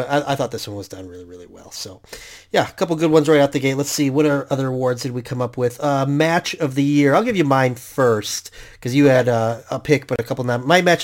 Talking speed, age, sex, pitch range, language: 285 wpm, 30-49, male, 115-140 Hz, English